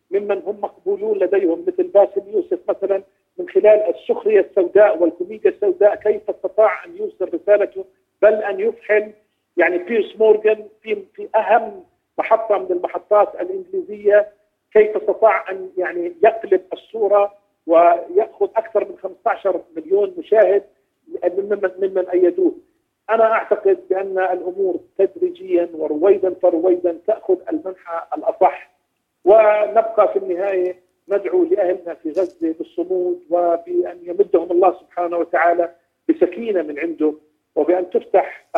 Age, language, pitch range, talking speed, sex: 50-69, Arabic, 180-225 Hz, 115 wpm, male